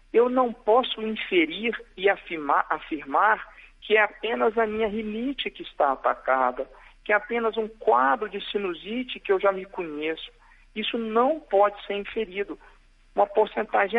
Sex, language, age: male, Portuguese, 50-69